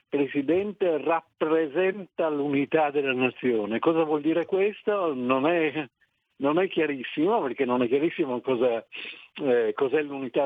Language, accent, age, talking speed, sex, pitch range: Italian, native, 60-79, 125 wpm, male, 130-180 Hz